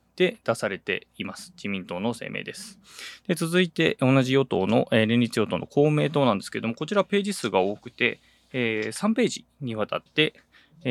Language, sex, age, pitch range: Japanese, male, 20-39, 110-155 Hz